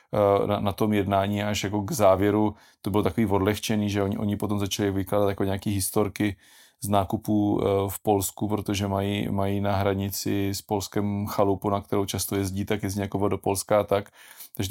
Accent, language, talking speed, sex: native, Czech, 180 wpm, male